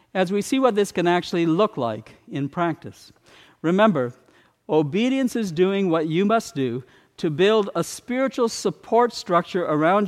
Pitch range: 145-205 Hz